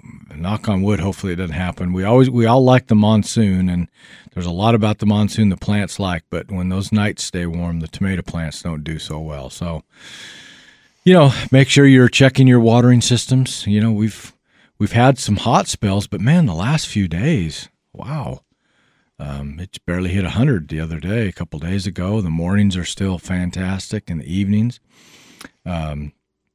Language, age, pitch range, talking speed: English, 50-69, 85-110 Hz, 190 wpm